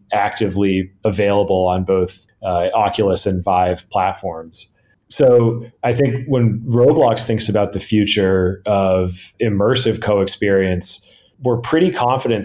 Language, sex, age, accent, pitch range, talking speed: English, male, 30-49, American, 95-115 Hz, 115 wpm